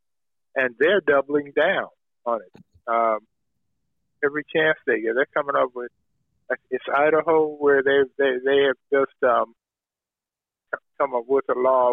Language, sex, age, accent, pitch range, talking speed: English, male, 50-69, American, 125-170 Hz, 145 wpm